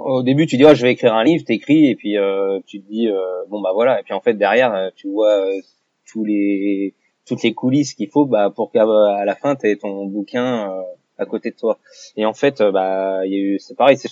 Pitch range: 100-125 Hz